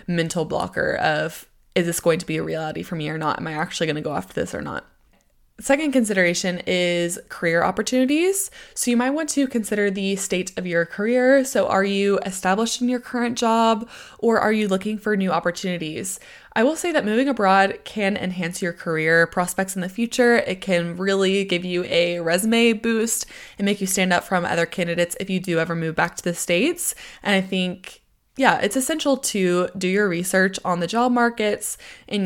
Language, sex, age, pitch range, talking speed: English, female, 20-39, 170-225 Hz, 205 wpm